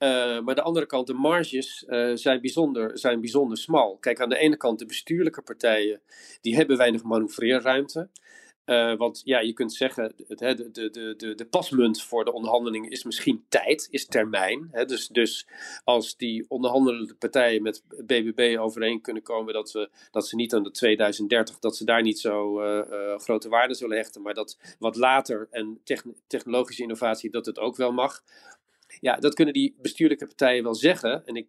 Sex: male